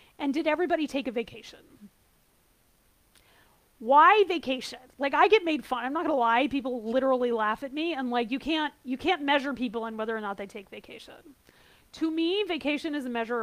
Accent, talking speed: American, 190 wpm